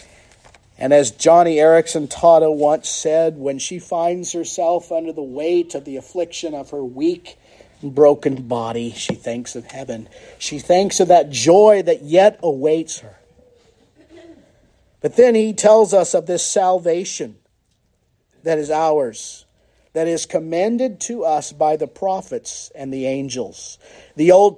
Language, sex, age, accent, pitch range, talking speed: English, male, 50-69, American, 145-190 Hz, 145 wpm